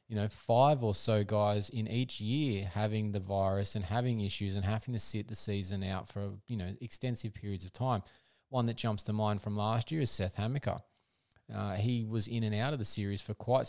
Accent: Australian